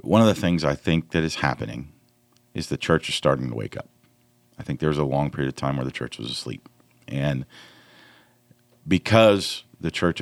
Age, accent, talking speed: 50-69, American, 205 wpm